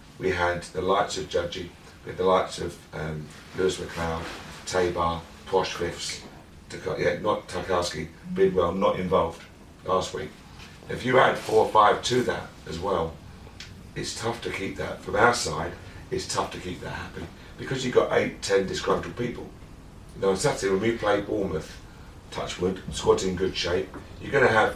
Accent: British